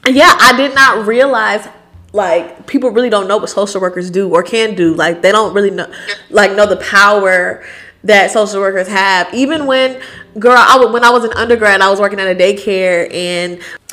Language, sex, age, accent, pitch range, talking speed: English, female, 10-29, American, 185-245 Hz, 200 wpm